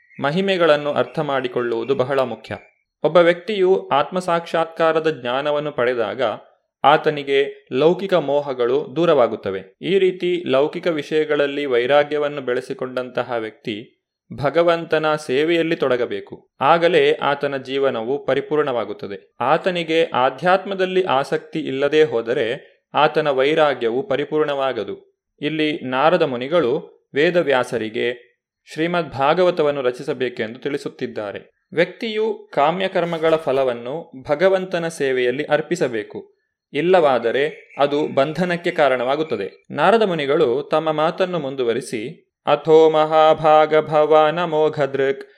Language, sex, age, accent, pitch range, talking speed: Kannada, male, 30-49, native, 130-175 Hz, 85 wpm